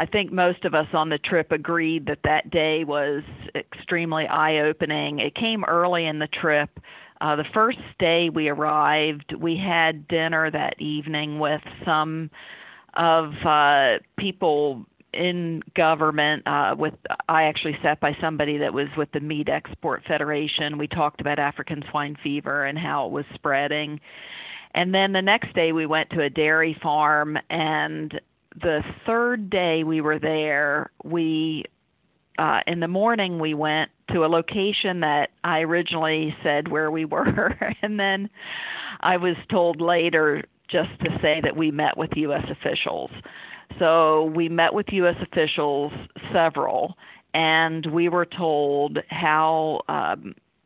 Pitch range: 150-170 Hz